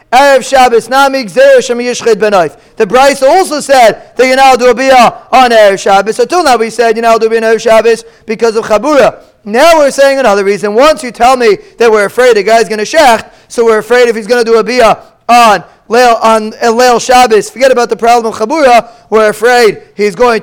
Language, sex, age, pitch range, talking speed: English, male, 30-49, 215-265 Hz, 215 wpm